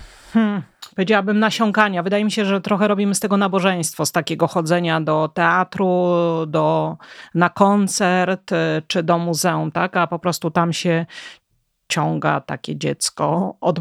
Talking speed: 140 wpm